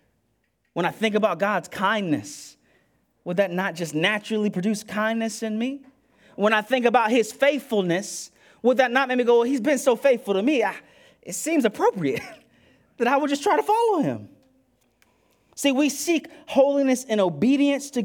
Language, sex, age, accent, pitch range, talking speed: English, male, 30-49, American, 200-245 Hz, 175 wpm